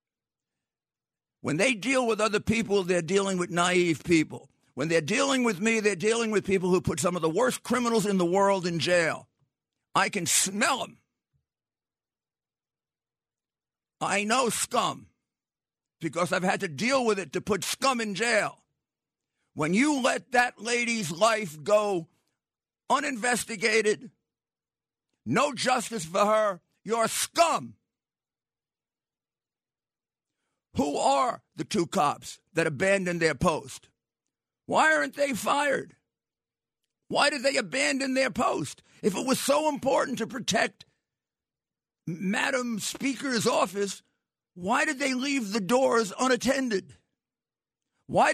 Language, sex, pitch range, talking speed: English, male, 190-255 Hz, 125 wpm